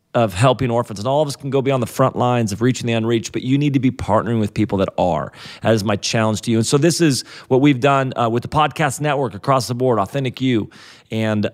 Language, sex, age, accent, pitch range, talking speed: English, male, 40-59, American, 110-140 Hz, 265 wpm